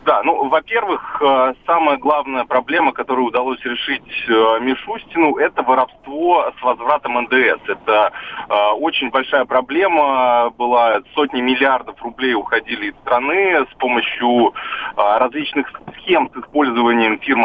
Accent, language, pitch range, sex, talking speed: native, Russian, 110-140 Hz, male, 125 wpm